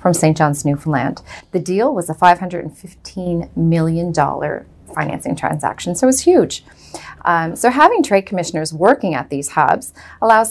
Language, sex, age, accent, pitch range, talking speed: English, female, 30-49, American, 160-195 Hz, 145 wpm